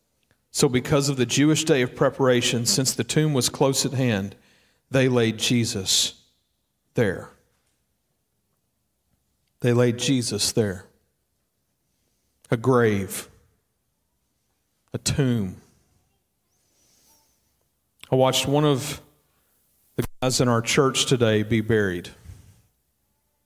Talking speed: 100 wpm